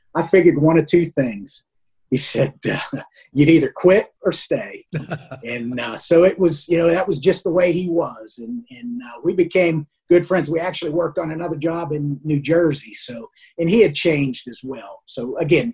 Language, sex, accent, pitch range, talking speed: English, male, American, 135-170 Hz, 200 wpm